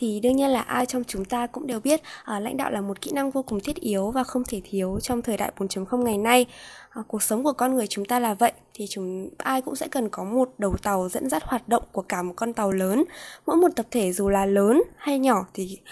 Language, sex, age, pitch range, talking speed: Vietnamese, female, 20-39, 200-265 Hz, 270 wpm